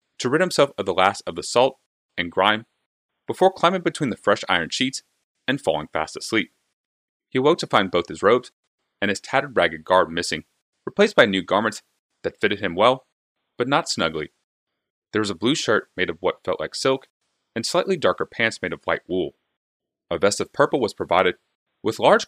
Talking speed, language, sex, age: 195 wpm, English, male, 30-49